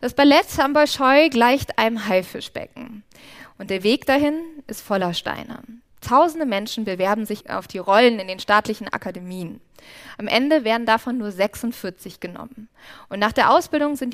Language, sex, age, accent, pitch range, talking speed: German, female, 20-39, German, 200-265 Hz, 155 wpm